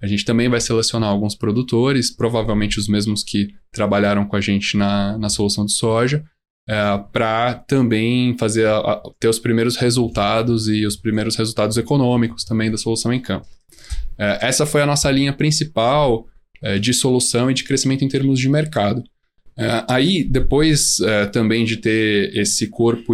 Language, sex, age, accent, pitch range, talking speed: Portuguese, male, 10-29, Brazilian, 110-135 Hz, 170 wpm